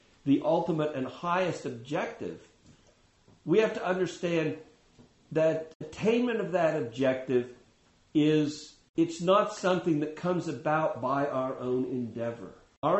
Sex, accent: male, American